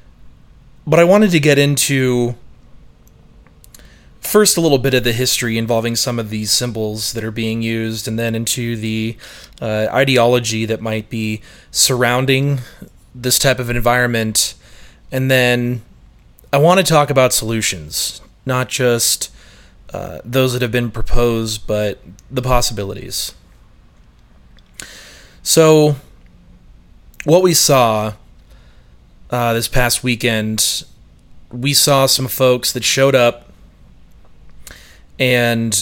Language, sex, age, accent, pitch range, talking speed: English, male, 30-49, American, 105-130 Hz, 120 wpm